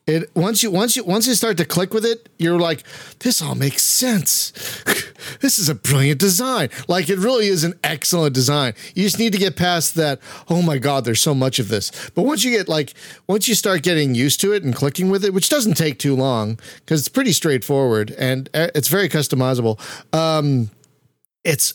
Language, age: English, 40-59